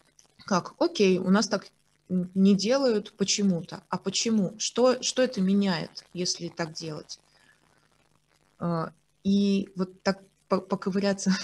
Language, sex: Russian, female